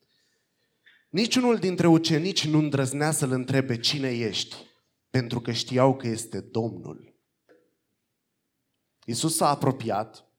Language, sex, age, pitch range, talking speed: Romanian, male, 30-49, 115-155 Hz, 105 wpm